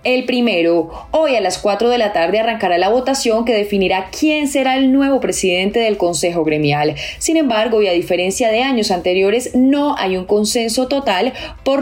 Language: Spanish